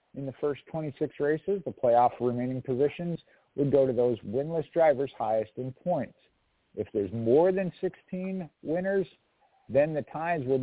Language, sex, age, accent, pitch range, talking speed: English, male, 50-69, American, 120-155 Hz, 160 wpm